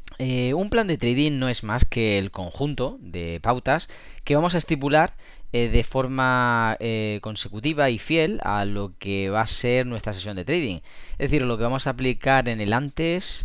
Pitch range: 105-135 Hz